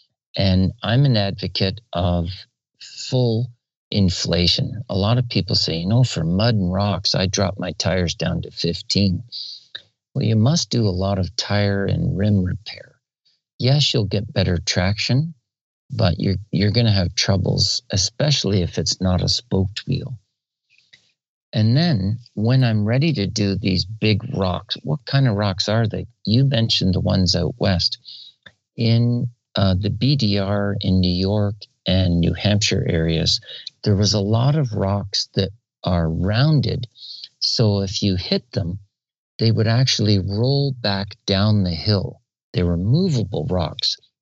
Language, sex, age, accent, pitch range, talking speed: English, male, 50-69, American, 95-125 Hz, 155 wpm